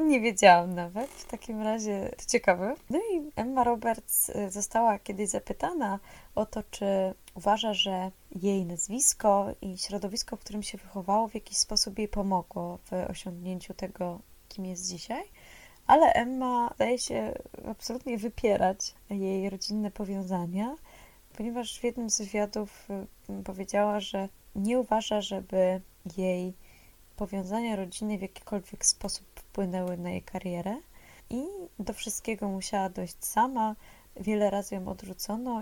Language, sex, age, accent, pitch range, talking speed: Polish, female, 20-39, native, 190-220 Hz, 130 wpm